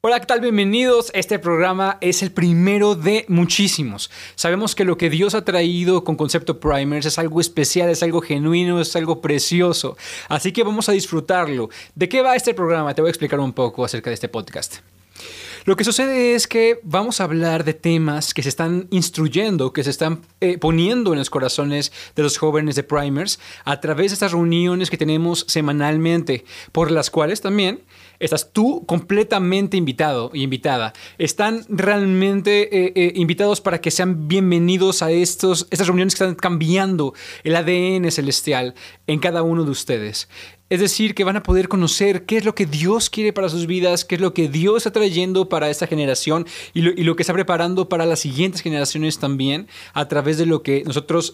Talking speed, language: 190 wpm, Spanish